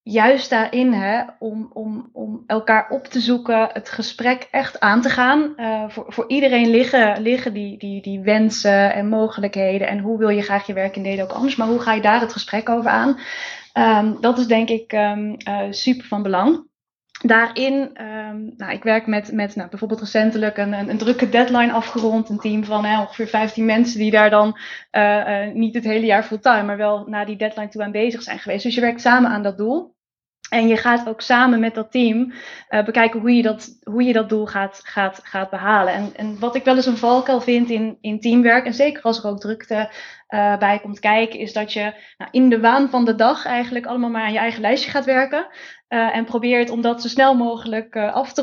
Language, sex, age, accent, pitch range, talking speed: Dutch, female, 20-39, Dutch, 210-245 Hz, 225 wpm